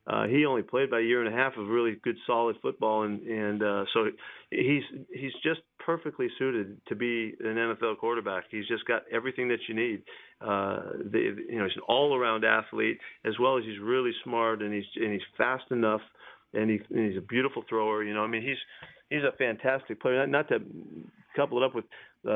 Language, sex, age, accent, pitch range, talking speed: English, male, 40-59, American, 110-130 Hz, 215 wpm